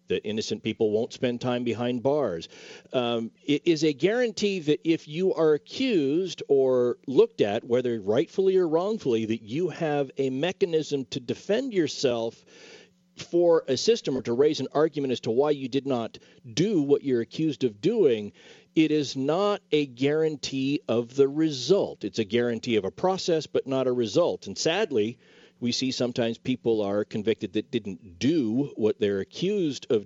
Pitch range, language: 120-155 Hz, English